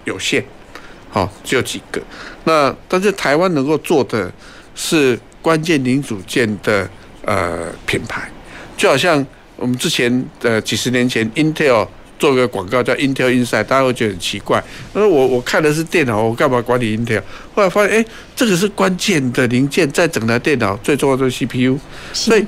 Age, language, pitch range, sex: 60-79, Chinese, 115-165 Hz, male